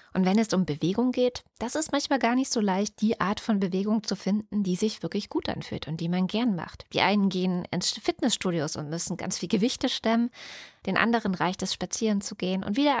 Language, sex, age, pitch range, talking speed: German, female, 20-39, 155-215 Hz, 225 wpm